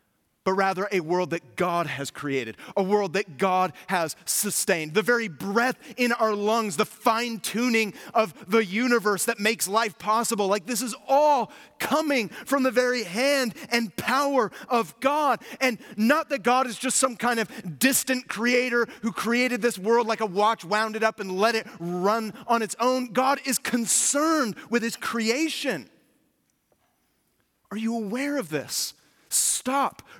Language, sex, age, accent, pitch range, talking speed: English, male, 30-49, American, 185-245 Hz, 165 wpm